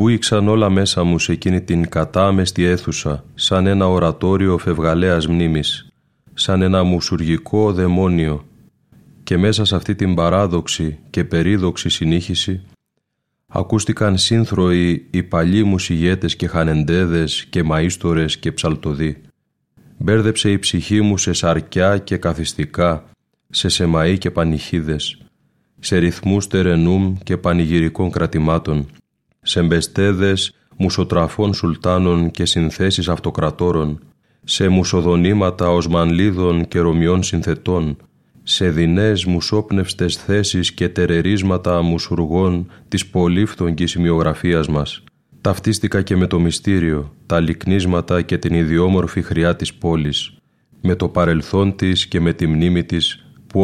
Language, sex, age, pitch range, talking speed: Greek, male, 30-49, 85-95 Hz, 115 wpm